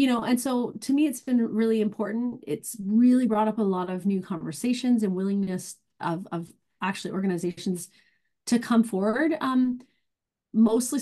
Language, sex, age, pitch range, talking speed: English, female, 30-49, 185-225 Hz, 165 wpm